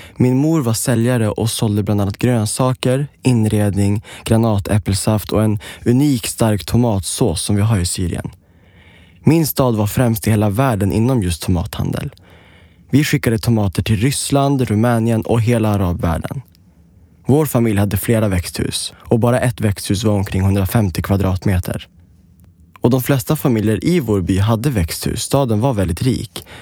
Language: Swedish